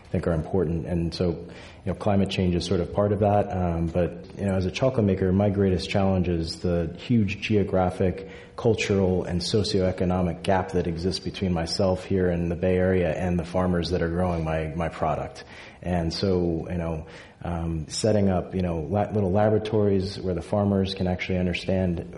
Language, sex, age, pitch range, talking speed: English, male, 30-49, 85-95 Hz, 185 wpm